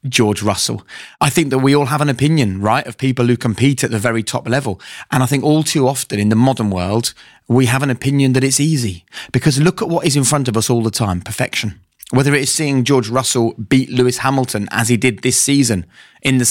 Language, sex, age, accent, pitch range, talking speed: English, male, 30-49, British, 110-135 Hz, 245 wpm